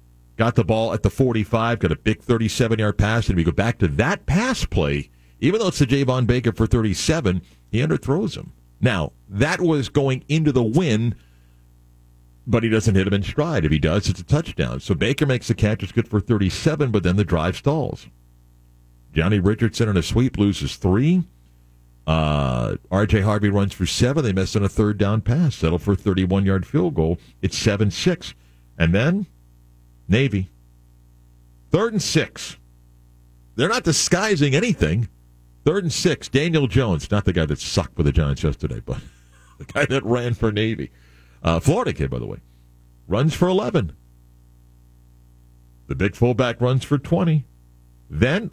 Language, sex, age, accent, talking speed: English, male, 50-69, American, 170 wpm